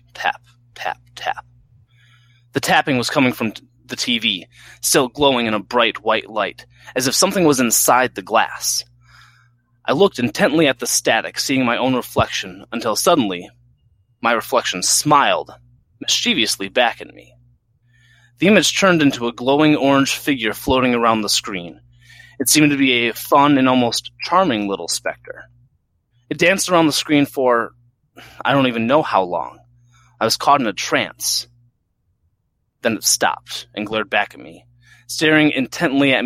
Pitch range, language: 115-135 Hz, English